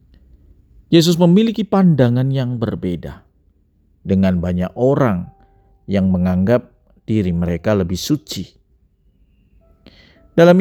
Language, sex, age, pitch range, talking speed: Indonesian, male, 50-69, 90-125 Hz, 85 wpm